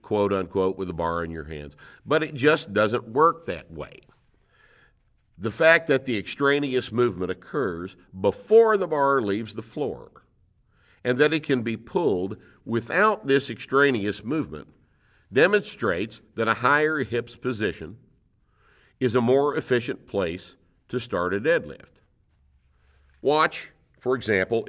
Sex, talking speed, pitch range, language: male, 135 wpm, 95-130 Hz, English